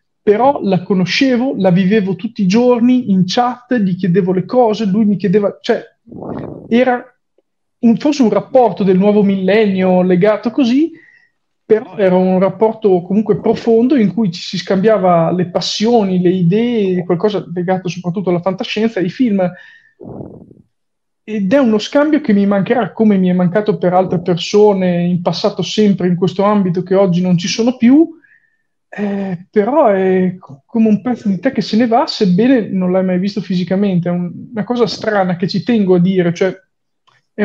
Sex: male